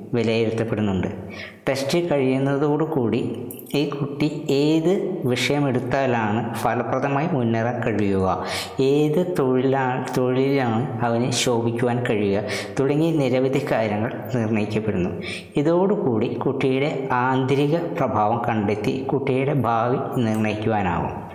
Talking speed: 80 wpm